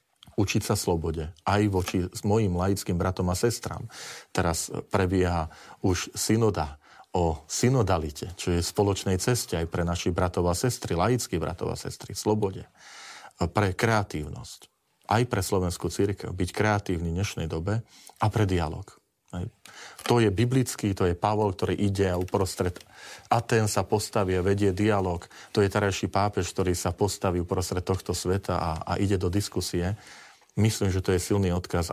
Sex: male